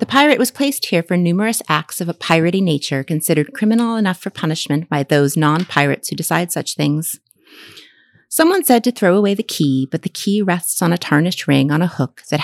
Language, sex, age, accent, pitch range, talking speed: English, female, 30-49, American, 145-190 Hz, 205 wpm